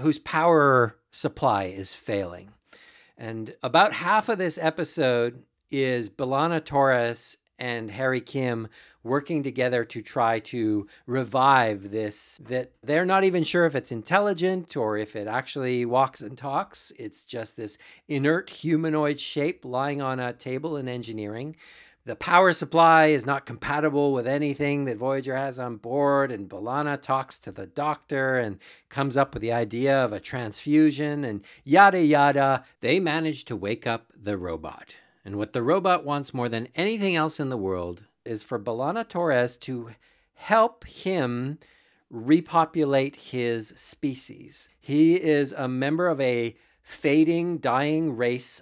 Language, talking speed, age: English, 150 wpm, 50-69